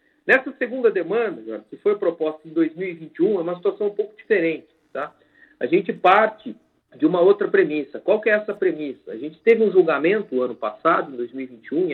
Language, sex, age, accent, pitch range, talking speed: Portuguese, male, 40-59, Brazilian, 195-315 Hz, 175 wpm